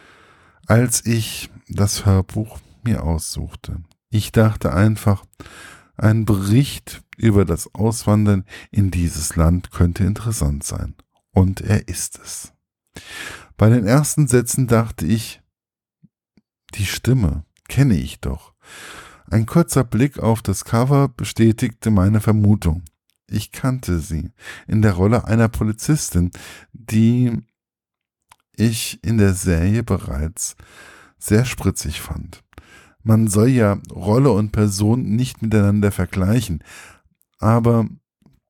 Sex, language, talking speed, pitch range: male, German, 110 wpm, 90-120 Hz